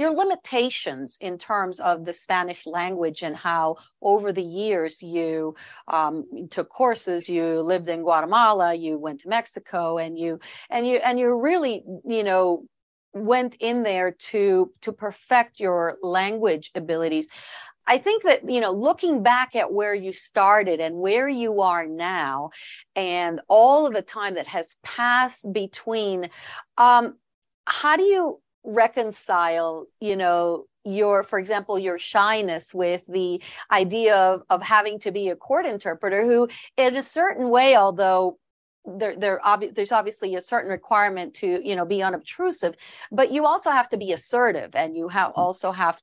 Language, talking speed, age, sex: English, 160 wpm, 50-69, female